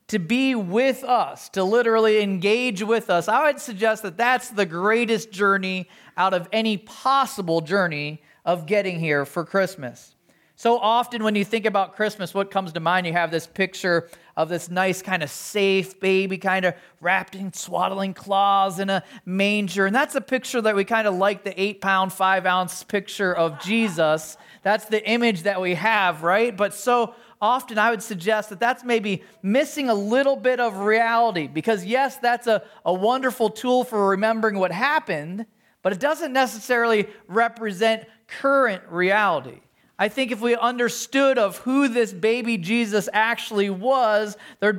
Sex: male